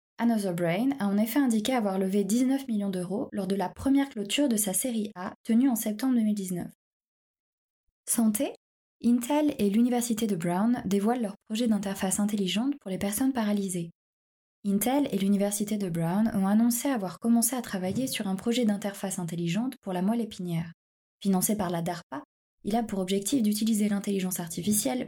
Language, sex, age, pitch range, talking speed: French, female, 20-39, 190-235 Hz, 165 wpm